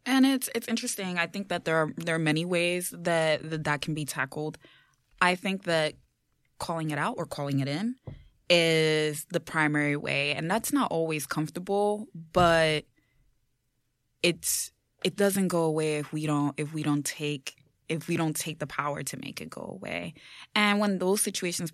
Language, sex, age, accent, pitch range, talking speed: English, female, 20-39, American, 150-180 Hz, 180 wpm